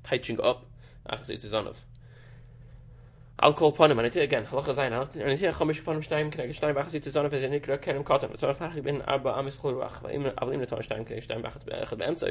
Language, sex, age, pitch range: English, male, 20-39, 125-150 Hz